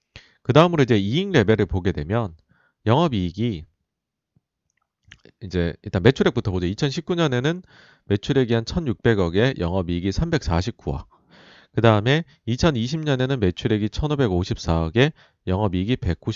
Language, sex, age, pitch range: Korean, male, 40-59, 95-130 Hz